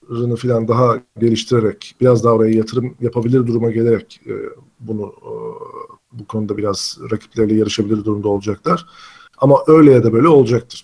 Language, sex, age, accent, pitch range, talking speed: Turkish, male, 50-69, native, 120-150 Hz, 150 wpm